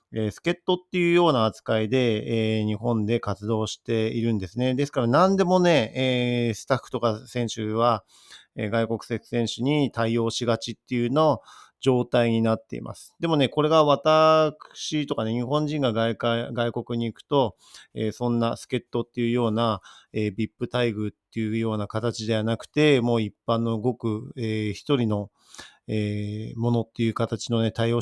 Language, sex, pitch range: Japanese, male, 110-130 Hz